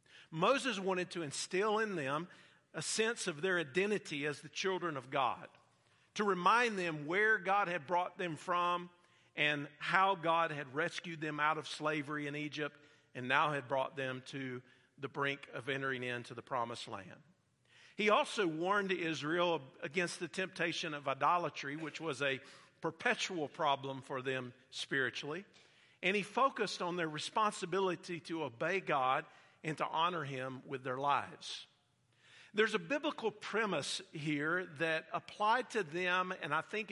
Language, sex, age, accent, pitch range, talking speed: English, male, 50-69, American, 140-185 Hz, 155 wpm